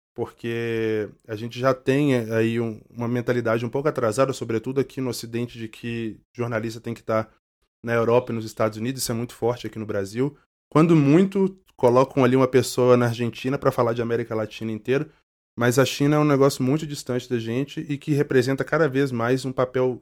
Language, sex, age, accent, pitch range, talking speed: Portuguese, male, 20-39, Brazilian, 110-135 Hz, 200 wpm